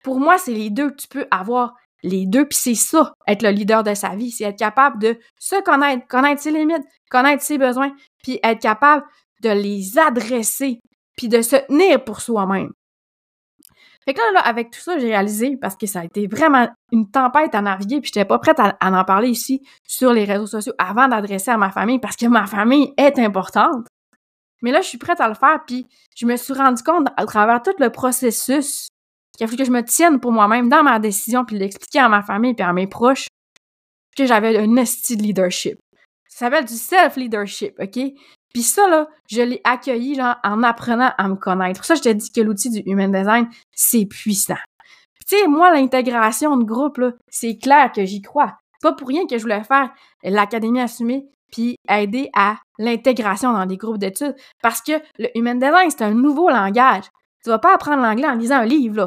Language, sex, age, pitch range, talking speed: French, female, 20-39, 215-275 Hz, 215 wpm